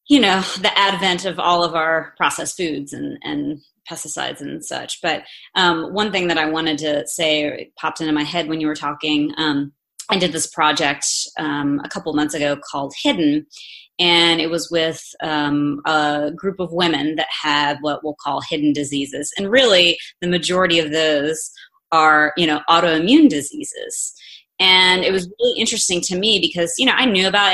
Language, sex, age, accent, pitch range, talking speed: English, female, 30-49, American, 150-185 Hz, 185 wpm